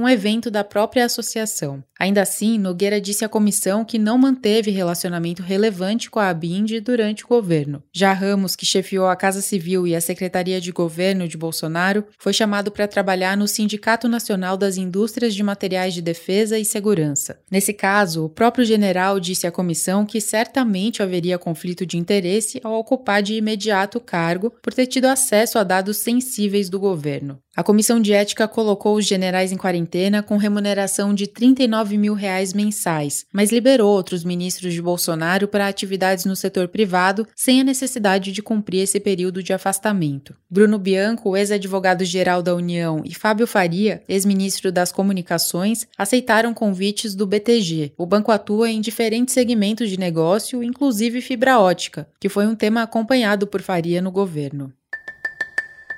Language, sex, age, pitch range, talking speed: Portuguese, female, 20-39, 185-220 Hz, 160 wpm